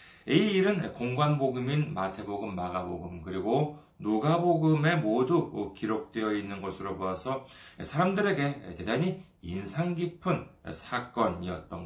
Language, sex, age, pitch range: Korean, male, 40-59, 100-165 Hz